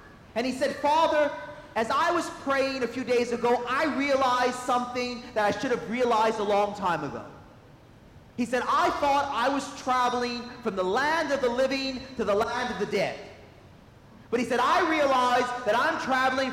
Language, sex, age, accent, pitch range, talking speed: English, male, 40-59, American, 215-265 Hz, 185 wpm